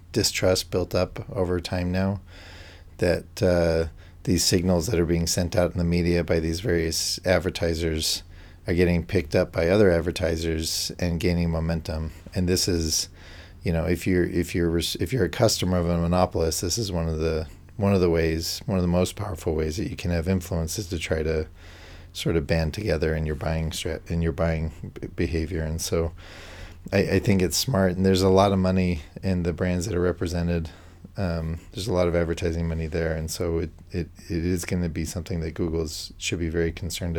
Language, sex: English, male